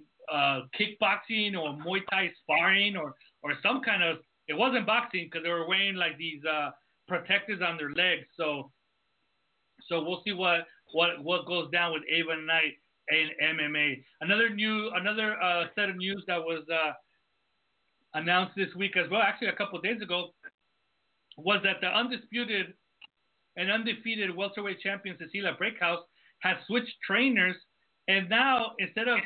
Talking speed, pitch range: 160 wpm, 170-210 Hz